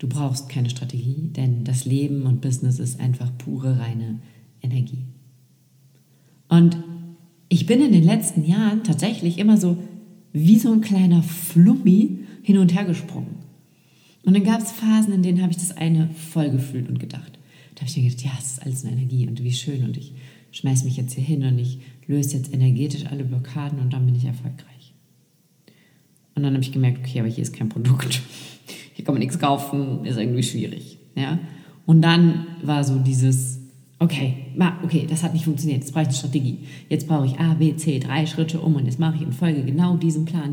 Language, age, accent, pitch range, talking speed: German, 40-59, German, 130-165 Hz, 200 wpm